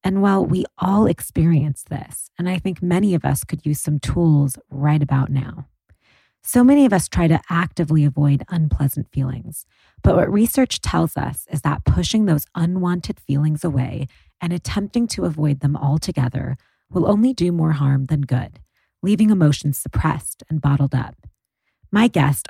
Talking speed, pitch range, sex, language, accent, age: 165 wpm, 140-180 Hz, female, English, American, 30-49